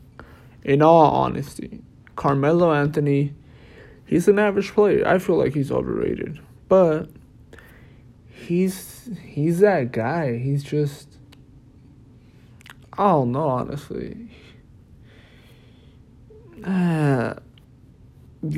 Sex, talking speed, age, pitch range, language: male, 80 wpm, 20-39, 125-160 Hz, English